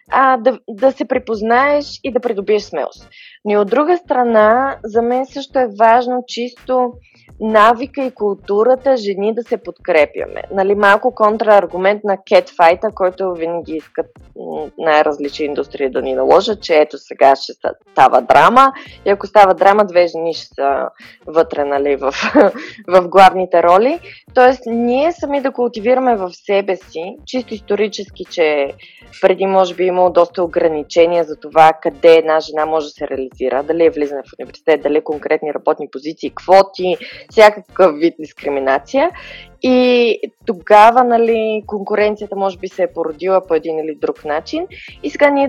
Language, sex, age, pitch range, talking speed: Bulgarian, female, 20-39, 165-245 Hz, 155 wpm